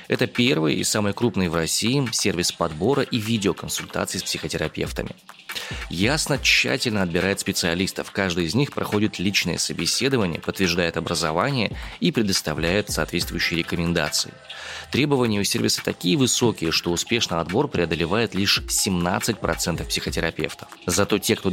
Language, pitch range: Russian, 85-115 Hz